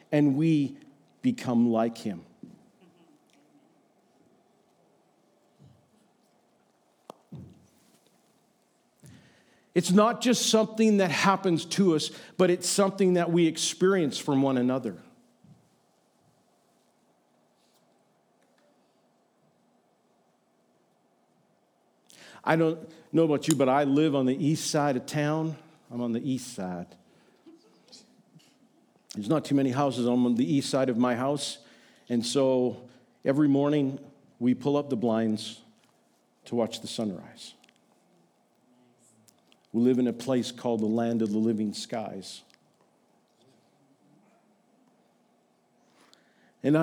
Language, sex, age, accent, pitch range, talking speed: English, male, 50-69, American, 120-155 Hz, 105 wpm